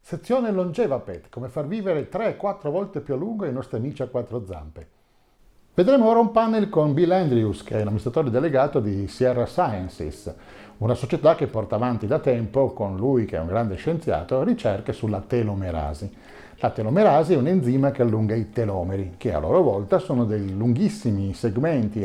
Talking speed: 175 wpm